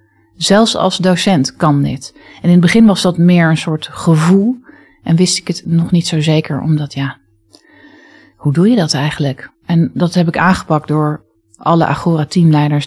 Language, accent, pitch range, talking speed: Dutch, Dutch, 145-175 Hz, 180 wpm